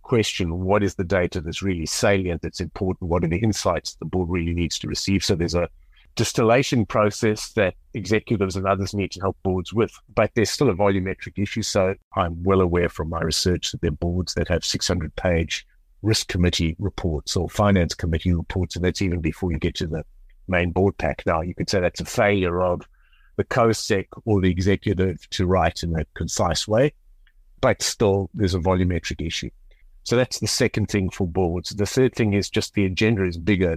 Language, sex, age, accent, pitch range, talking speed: English, male, 50-69, British, 85-100 Hz, 200 wpm